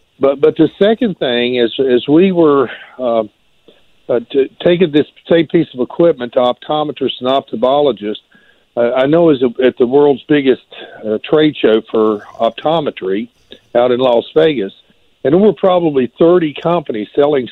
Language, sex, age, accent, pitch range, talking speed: English, male, 60-79, American, 120-150 Hz, 155 wpm